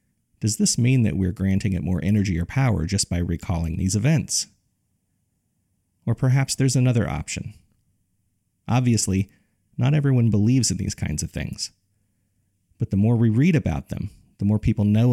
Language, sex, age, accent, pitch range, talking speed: English, male, 40-59, American, 95-115 Hz, 165 wpm